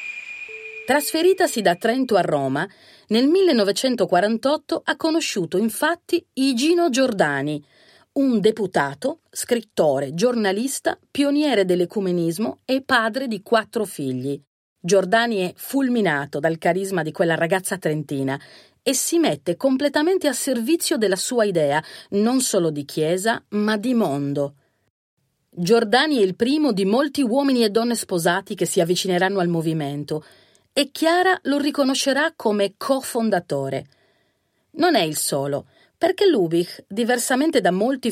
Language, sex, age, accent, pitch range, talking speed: Italian, female, 40-59, native, 175-280 Hz, 125 wpm